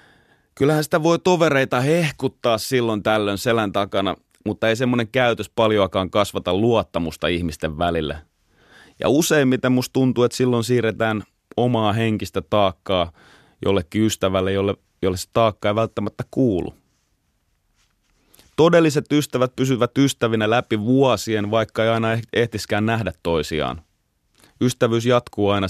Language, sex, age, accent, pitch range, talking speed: Finnish, male, 30-49, native, 90-120 Hz, 120 wpm